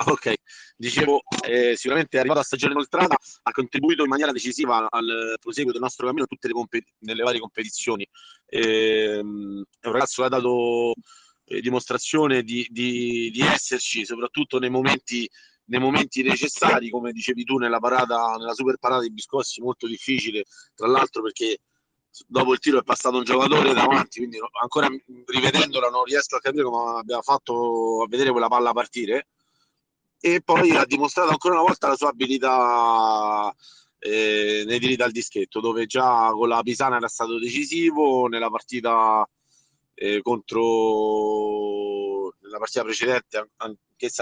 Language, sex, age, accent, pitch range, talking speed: Italian, male, 40-59, native, 115-140 Hz, 155 wpm